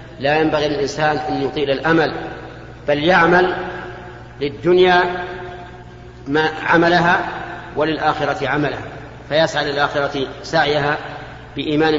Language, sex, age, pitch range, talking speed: Arabic, male, 50-69, 140-160 Hz, 85 wpm